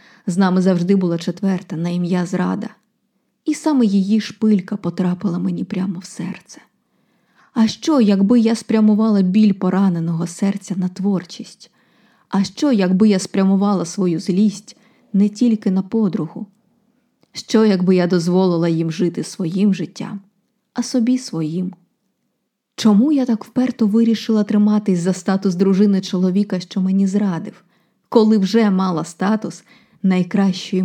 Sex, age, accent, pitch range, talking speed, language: female, 20-39, native, 185-220 Hz, 130 wpm, Ukrainian